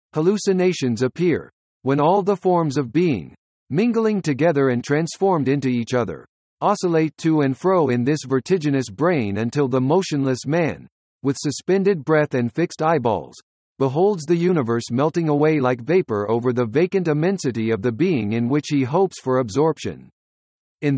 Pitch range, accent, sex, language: 130-175 Hz, American, male, English